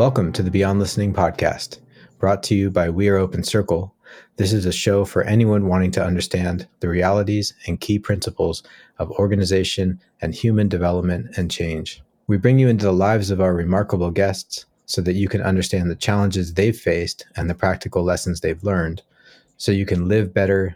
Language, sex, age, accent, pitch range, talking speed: English, male, 30-49, American, 90-105 Hz, 190 wpm